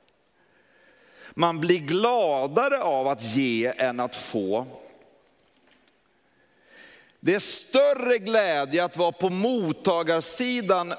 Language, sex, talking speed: Swedish, male, 95 wpm